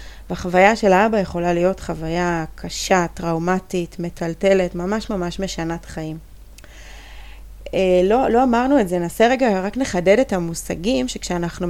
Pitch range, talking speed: 170-205 Hz, 125 wpm